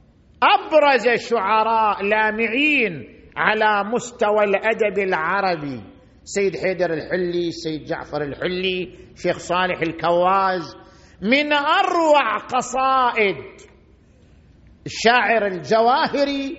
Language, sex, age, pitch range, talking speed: Arabic, male, 50-69, 180-270 Hz, 75 wpm